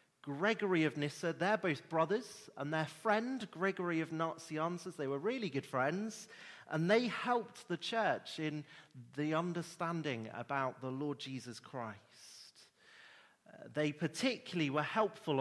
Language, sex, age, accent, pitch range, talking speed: English, male, 30-49, British, 125-170 Hz, 135 wpm